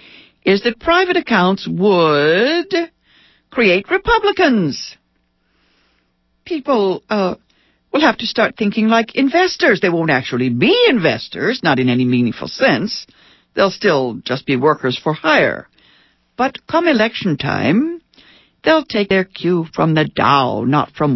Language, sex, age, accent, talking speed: English, female, 60-79, American, 130 wpm